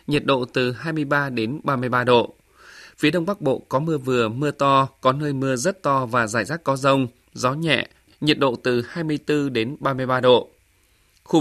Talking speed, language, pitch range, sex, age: 190 wpm, Vietnamese, 125-150 Hz, male, 20-39